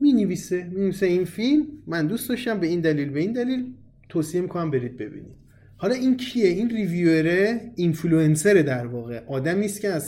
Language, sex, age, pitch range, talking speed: Persian, male, 30-49, 135-190 Hz, 180 wpm